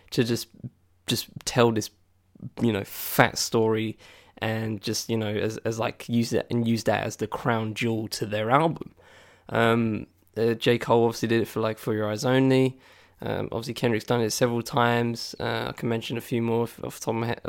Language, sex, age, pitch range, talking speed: English, male, 10-29, 110-125 Hz, 210 wpm